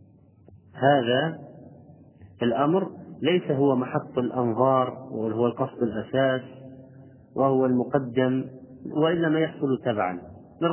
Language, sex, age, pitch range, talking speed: Arabic, male, 40-59, 115-150 Hz, 85 wpm